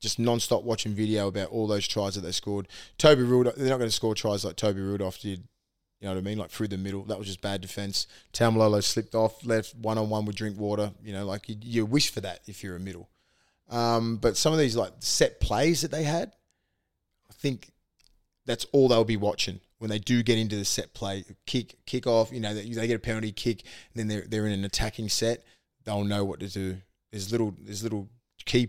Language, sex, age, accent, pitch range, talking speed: English, male, 20-39, Australian, 100-120 Hz, 230 wpm